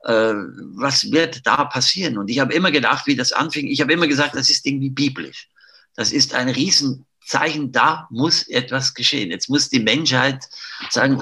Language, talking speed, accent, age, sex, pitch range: German, 175 wpm, German, 50-69, male, 110-140 Hz